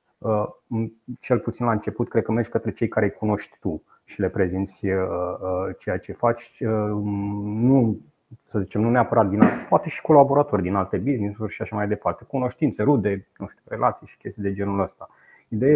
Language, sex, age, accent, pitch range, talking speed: Romanian, male, 30-49, native, 100-120 Hz, 170 wpm